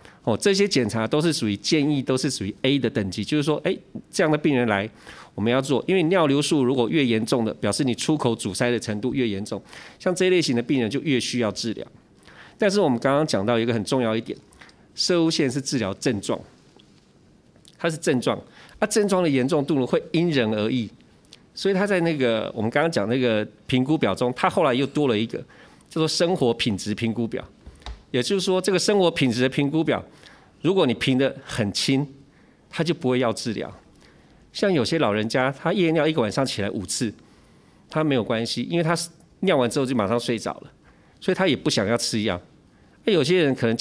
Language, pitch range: Chinese, 115-160 Hz